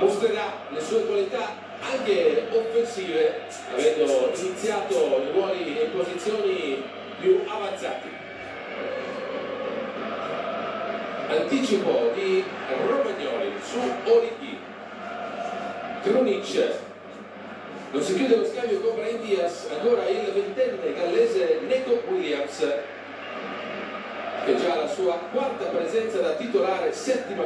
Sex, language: male, Italian